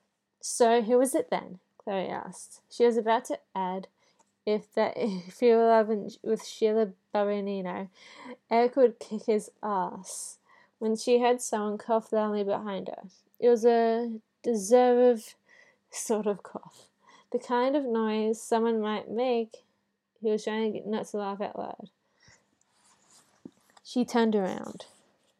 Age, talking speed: 20-39, 135 wpm